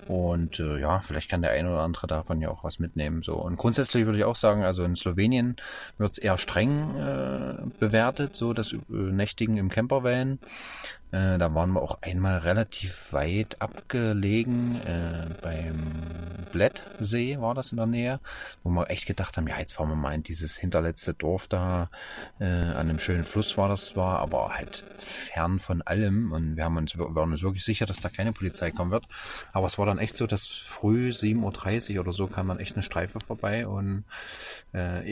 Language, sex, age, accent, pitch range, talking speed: German, male, 30-49, German, 85-110 Hz, 195 wpm